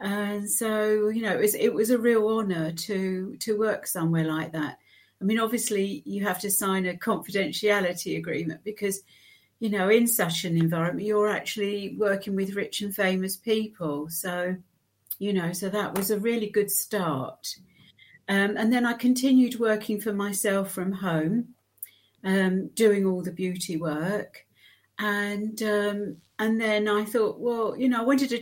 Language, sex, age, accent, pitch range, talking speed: English, female, 50-69, British, 185-220 Hz, 170 wpm